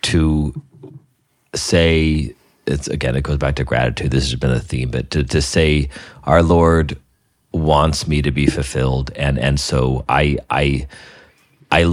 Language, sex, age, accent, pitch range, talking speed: English, male, 30-49, American, 70-85 Hz, 160 wpm